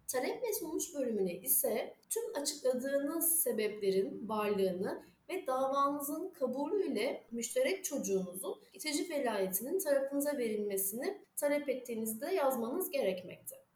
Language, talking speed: Turkish, 95 wpm